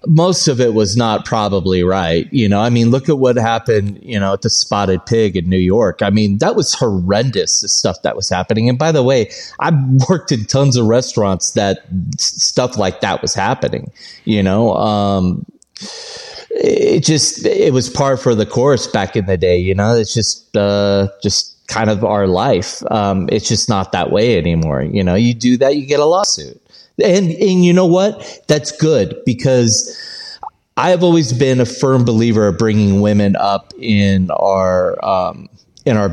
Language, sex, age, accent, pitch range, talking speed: English, male, 30-49, American, 100-130 Hz, 190 wpm